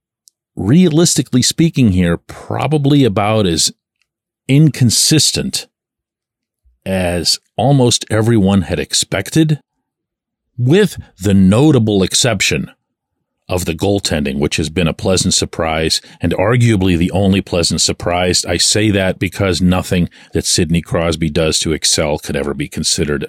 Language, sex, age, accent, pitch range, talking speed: English, male, 50-69, American, 95-140 Hz, 120 wpm